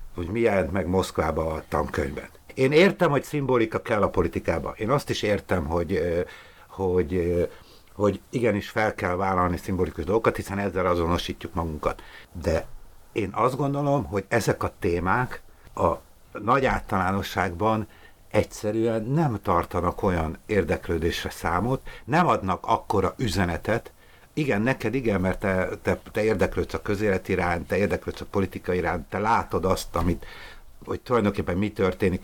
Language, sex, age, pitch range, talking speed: Hungarian, male, 60-79, 90-110 Hz, 140 wpm